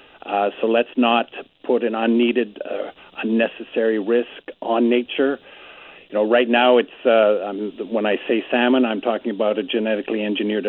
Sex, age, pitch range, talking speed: male, 50-69, 110-125 Hz, 155 wpm